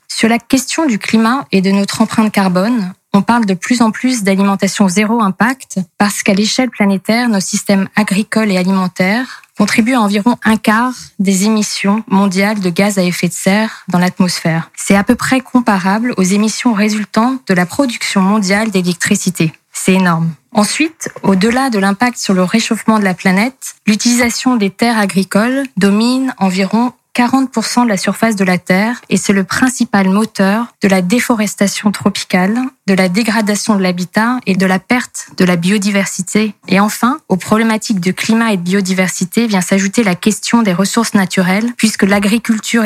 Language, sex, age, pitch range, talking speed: French, female, 20-39, 195-225 Hz, 170 wpm